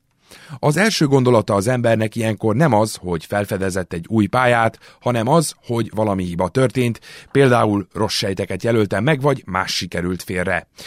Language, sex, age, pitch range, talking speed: Hungarian, male, 30-49, 95-130 Hz, 155 wpm